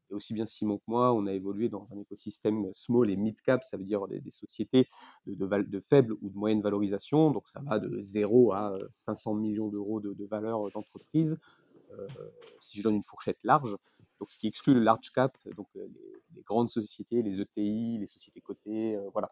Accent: French